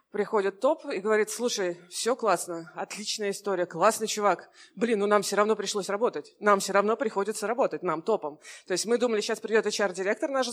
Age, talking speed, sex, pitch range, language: 20-39, 190 wpm, female, 195-240 Hz, Russian